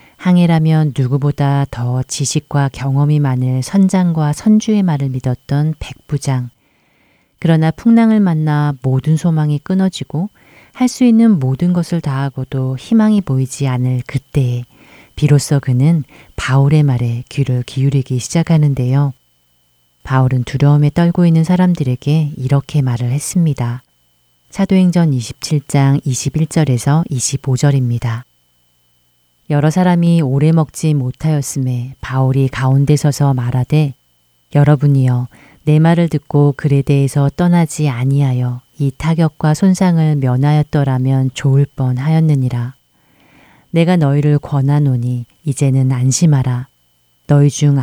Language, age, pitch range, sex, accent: Korean, 40-59, 130-155 Hz, female, native